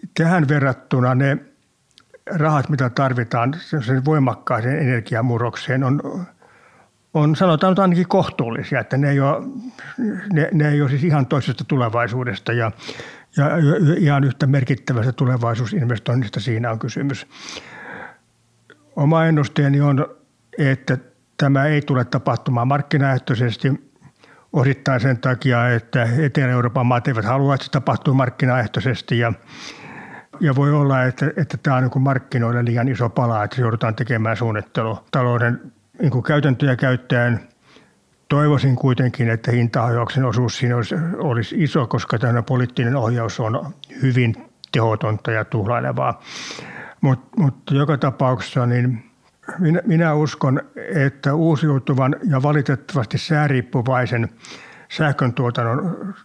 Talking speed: 115 wpm